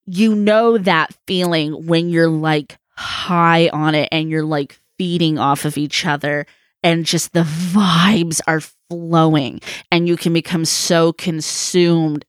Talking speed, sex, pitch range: 145 wpm, female, 160-195 Hz